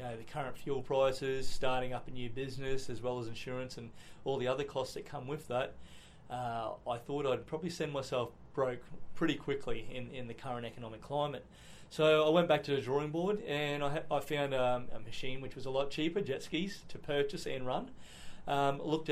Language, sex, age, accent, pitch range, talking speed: English, male, 30-49, Australian, 130-145 Hz, 215 wpm